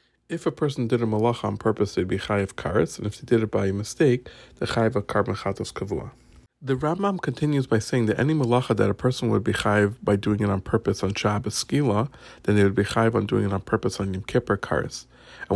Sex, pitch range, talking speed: male, 100-125 Hz, 225 wpm